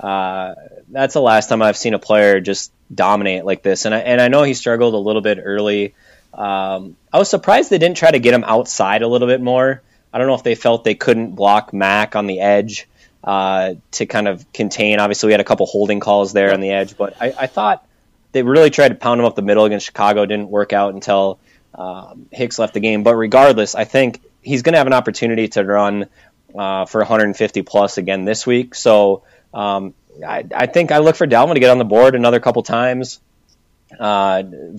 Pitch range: 105-130 Hz